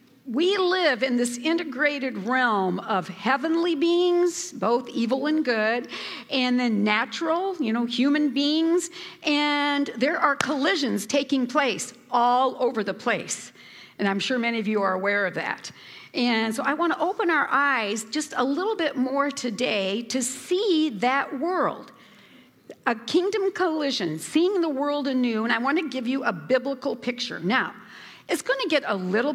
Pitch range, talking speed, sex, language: 220-295 Hz, 165 wpm, female, English